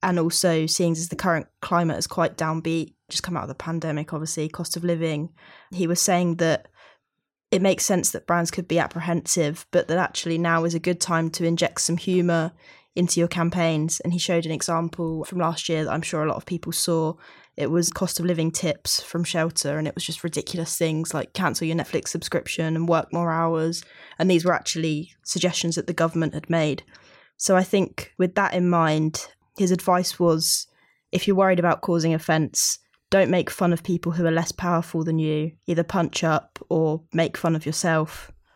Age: 10-29